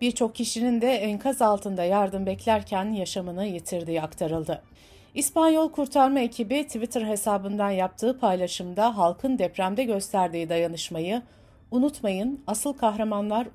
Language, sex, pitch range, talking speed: Turkish, female, 180-240 Hz, 105 wpm